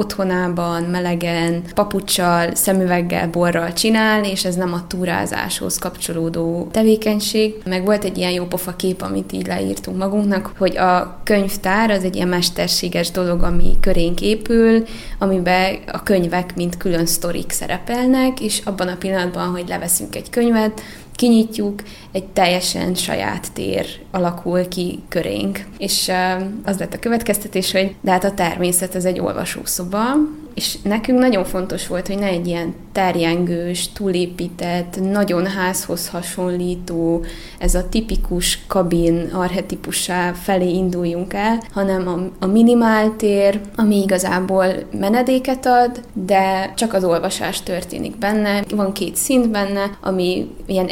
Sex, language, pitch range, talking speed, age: female, Hungarian, 180-205 Hz, 135 wpm, 20-39